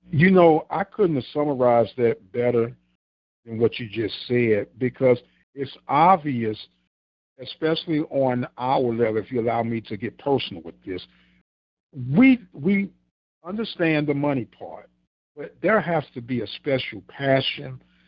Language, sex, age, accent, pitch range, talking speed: English, male, 50-69, American, 115-155 Hz, 145 wpm